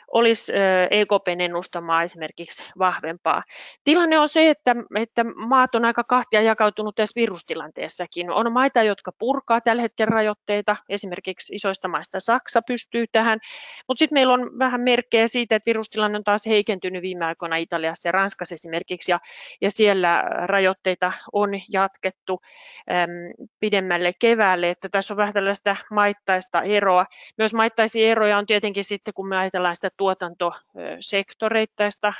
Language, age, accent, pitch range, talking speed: Finnish, 30-49, native, 175-215 Hz, 140 wpm